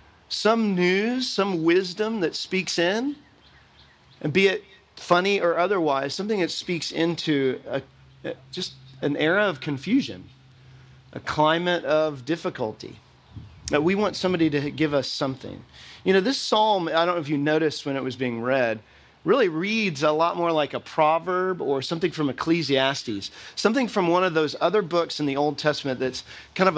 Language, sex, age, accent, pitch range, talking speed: English, male, 40-59, American, 135-185 Hz, 165 wpm